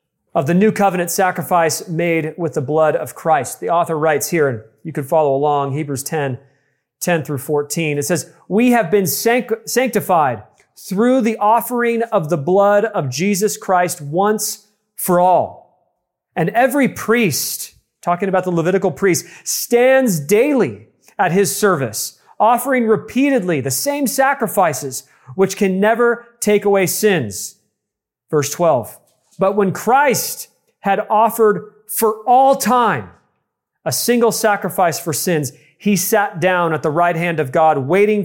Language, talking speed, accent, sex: English, 145 wpm, American, male